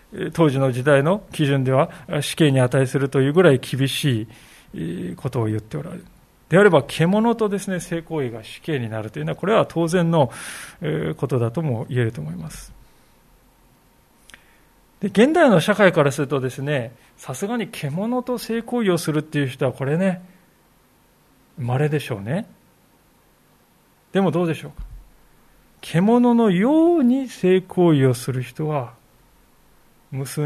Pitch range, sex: 135-195 Hz, male